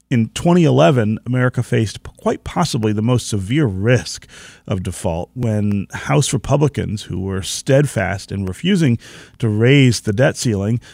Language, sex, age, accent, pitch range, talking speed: English, male, 40-59, American, 105-140 Hz, 135 wpm